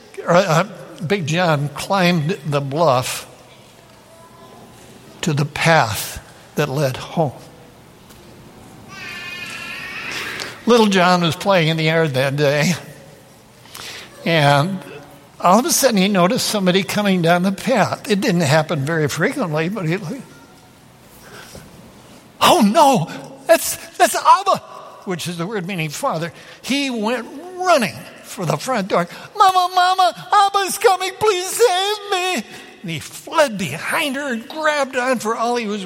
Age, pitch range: 60-79, 160-225 Hz